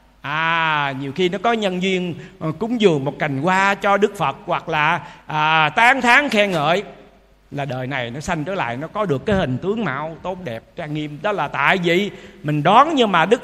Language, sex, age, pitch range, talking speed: Vietnamese, male, 50-69, 150-215 Hz, 220 wpm